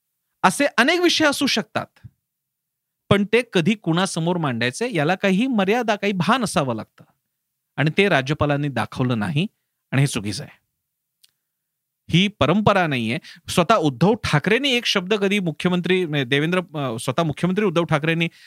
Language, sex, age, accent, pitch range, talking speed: Marathi, male, 40-59, native, 155-205 Hz, 135 wpm